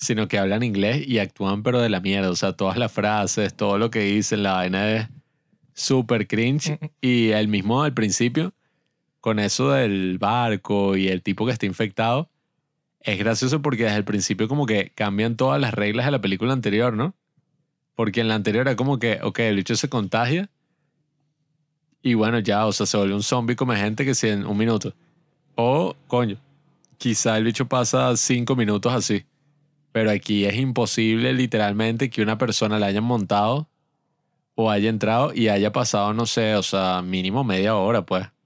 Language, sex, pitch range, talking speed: Spanish, male, 105-135 Hz, 185 wpm